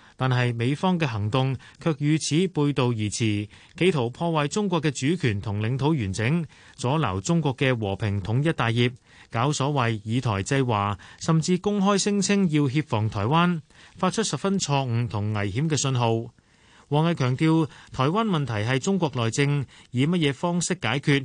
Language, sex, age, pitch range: Chinese, male, 30-49, 115-160 Hz